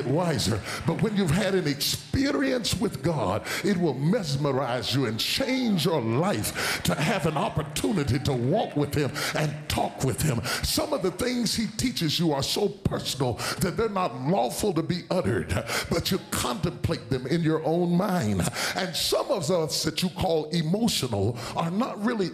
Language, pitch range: English, 130-185 Hz